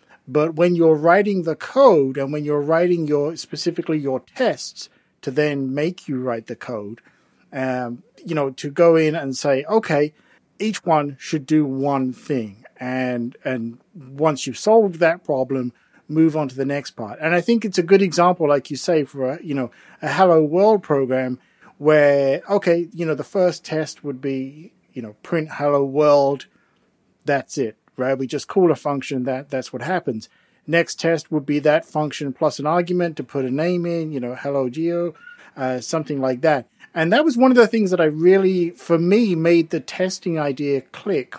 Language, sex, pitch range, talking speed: English, male, 135-170 Hz, 190 wpm